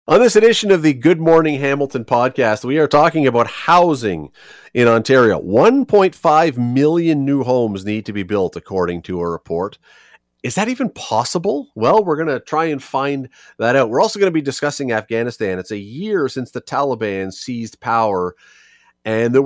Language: English